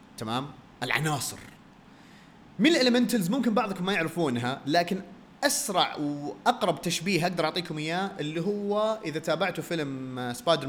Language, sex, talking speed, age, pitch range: Arabic, male, 120 wpm, 30-49, 125-205 Hz